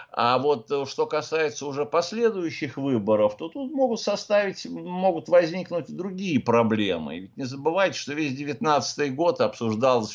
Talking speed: 140 wpm